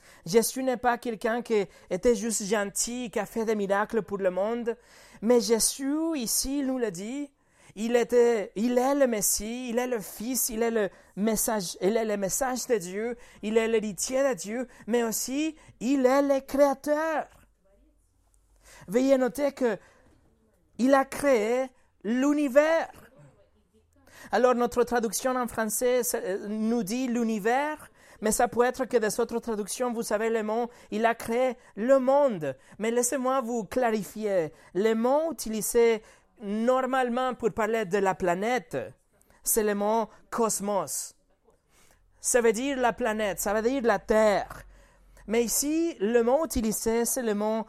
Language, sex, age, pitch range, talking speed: French, male, 30-49, 210-255 Hz, 160 wpm